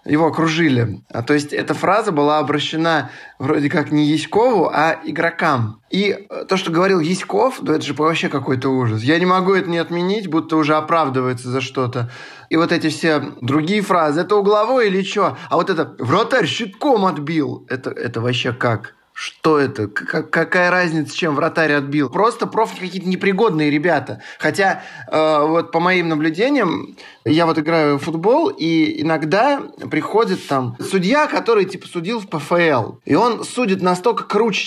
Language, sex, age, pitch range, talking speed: Russian, male, 20-39, 140-185 Hz, 165 wpm